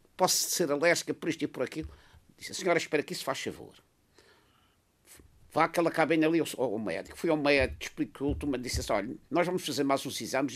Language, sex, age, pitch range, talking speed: Portuguese, male, 50-69, 145-195 Hz, 205 wpm